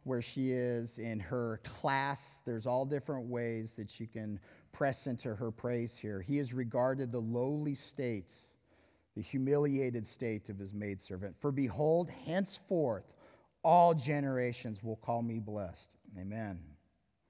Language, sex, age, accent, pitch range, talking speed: English, male, 40-59, American, 105-140 Hz, 140 wpm